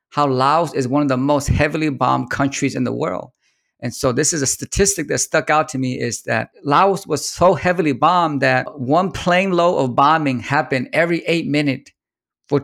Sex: male